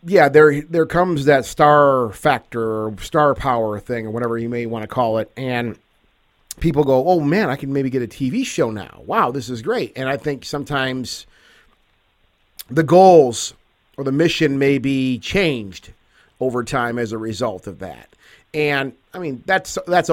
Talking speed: 180 wpm